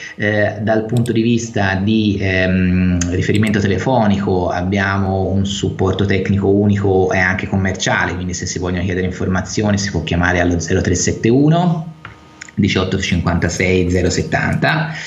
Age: 20-39